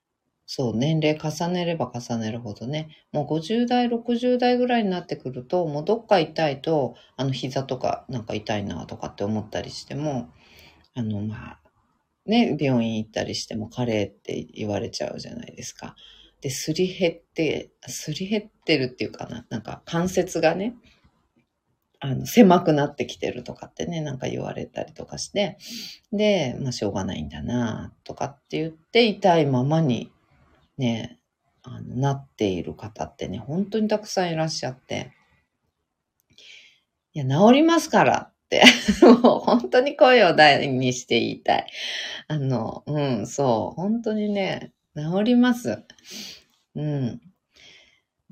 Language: Japanese